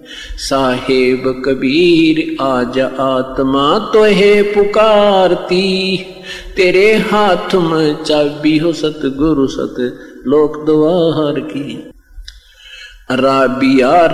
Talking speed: 70 wpm